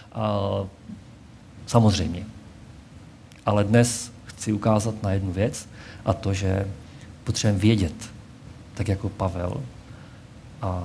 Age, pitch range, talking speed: 50-69, 105-135 Hz, 100 wpm